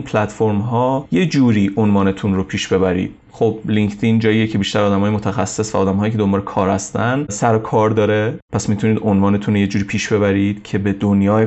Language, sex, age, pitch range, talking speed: Persian, male, 30-49, 105-125 Hz, 185 wpm